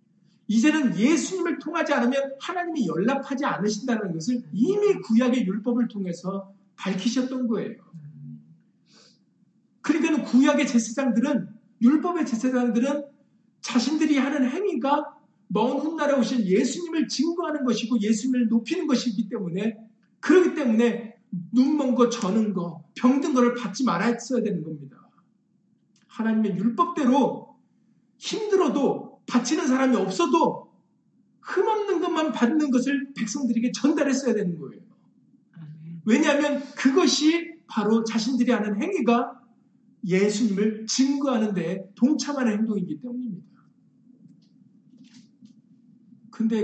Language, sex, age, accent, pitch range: Korean, male, 40-59, native, 215-270 Hz